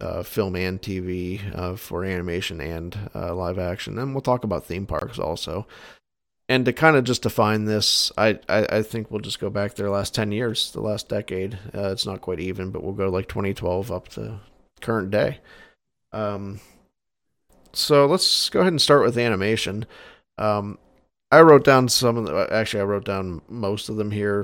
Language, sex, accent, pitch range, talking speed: English, male, American, 95-115 Hz, 190 wpm